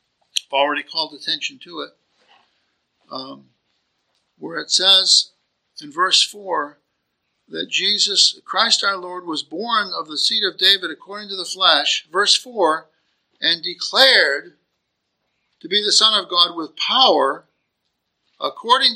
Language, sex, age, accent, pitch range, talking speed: English, male, 60-79, American, 205-310 Hz, 130 wpm